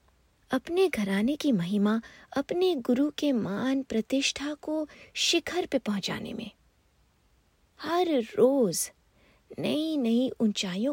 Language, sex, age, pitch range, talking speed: English, female, 60-79, 200-290 Hz, 105 wpm